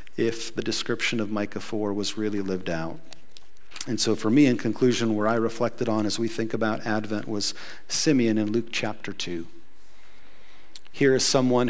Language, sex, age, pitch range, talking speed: English, male, 40-59, 110-130 Hz, 175 wpm